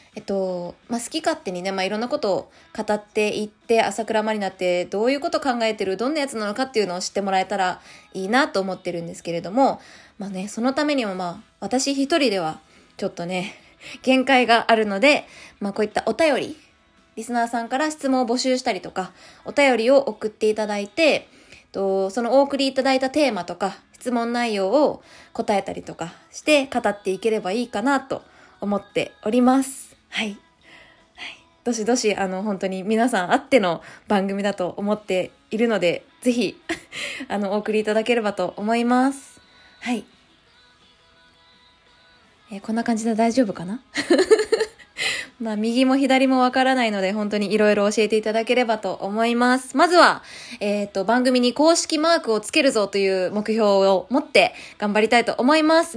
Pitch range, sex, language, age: 200-265 Hz, female, Japanese, 20-39